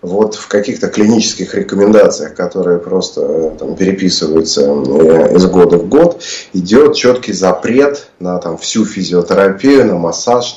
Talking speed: 115 wpm